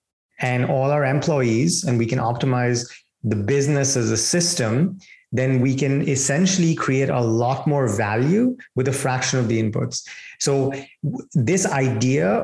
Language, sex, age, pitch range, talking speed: English, male, 30-49, 120-145 Hz, 150 wpm